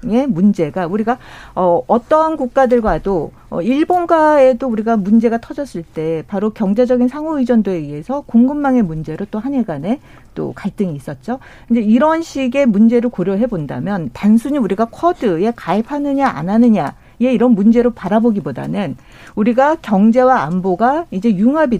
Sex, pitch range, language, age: female, 200-265 Hz, Korean, 40-59